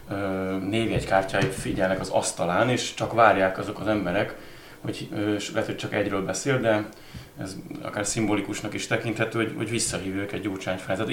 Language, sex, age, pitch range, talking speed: Hungarian, male, 30-49, 100-110 Hz, 160 wpm